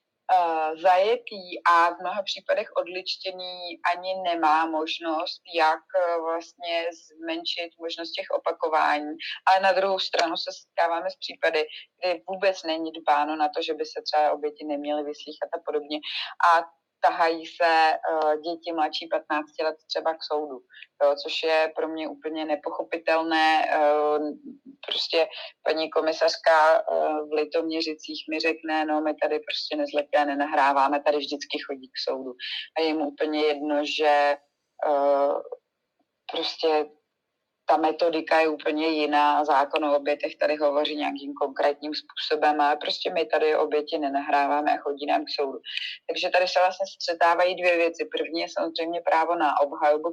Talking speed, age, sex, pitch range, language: 140 wpm, 30-49, female, 150-175 Hz, Czech